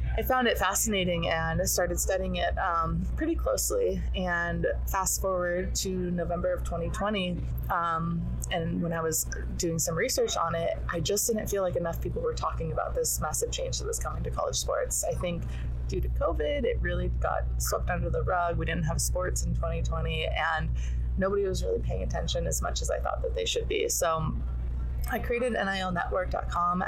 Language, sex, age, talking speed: English, female, 20-39, 190 wpm